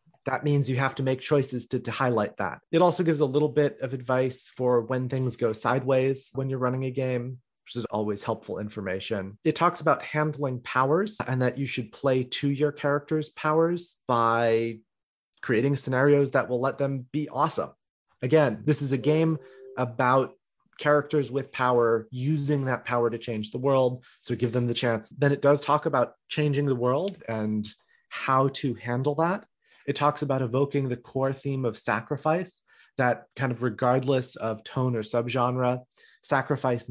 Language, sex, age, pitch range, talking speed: English, male, 30-49, 120-145 Hz, 175 wpm